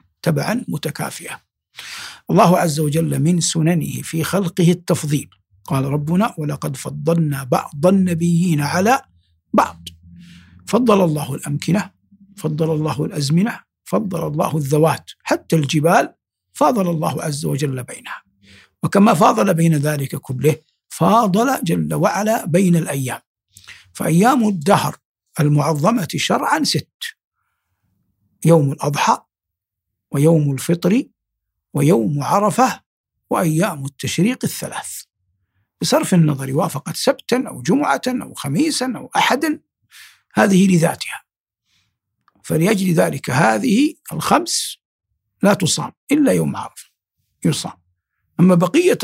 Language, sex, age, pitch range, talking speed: Arabic, male, 60-79, 145-205 Hz, 100 wpm